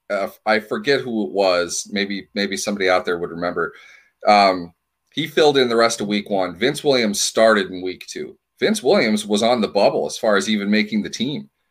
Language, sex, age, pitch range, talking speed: English, male, 30-49, 100-130 Hz, 210 wpm